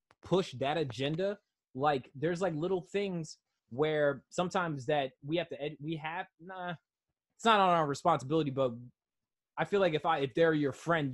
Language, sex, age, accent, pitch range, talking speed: English, male, 20-39, American, 130-165 Hz, 170 wpm